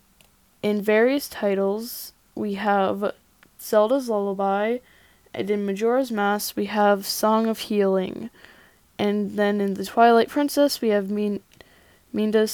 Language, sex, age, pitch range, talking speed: English, female, 10-29, 195-225 Hz, 120 wpm